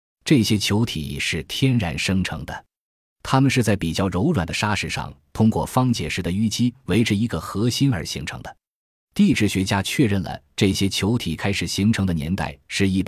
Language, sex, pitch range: Chinese, male, 85-110 Hz